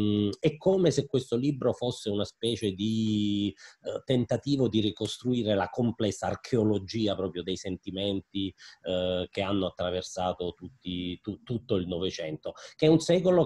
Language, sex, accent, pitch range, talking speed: Italian, male, native, 90-110 Hz, 145 wpm